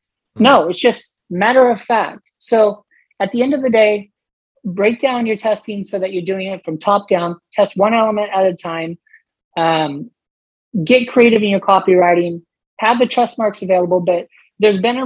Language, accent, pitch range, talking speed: English, American, 195-245 Hz, 185 wpm